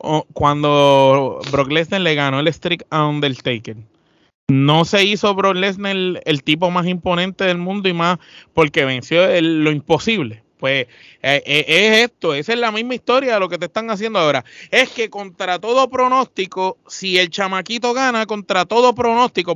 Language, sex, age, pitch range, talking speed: Spanish, male, 20-39, 145-195 Hz, 170 wpm